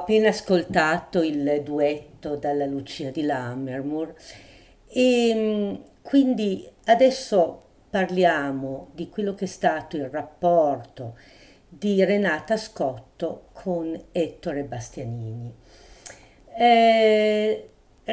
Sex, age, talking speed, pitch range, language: female, 50-69, 90 wpm, 145-220 Hz, Italian